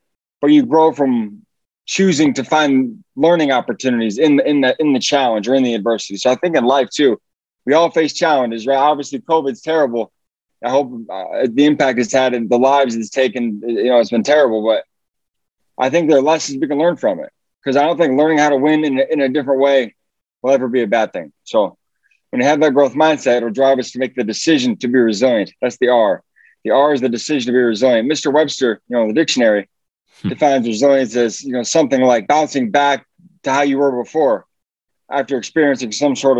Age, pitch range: 20-39, 125-155 Hz